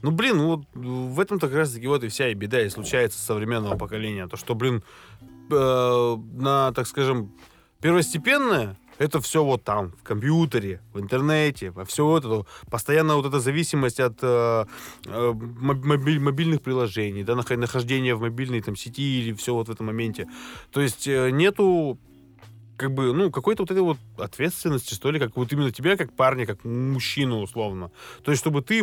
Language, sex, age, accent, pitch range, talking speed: Russian, male, 20-39, native, 115-155 Hz, 175 wpm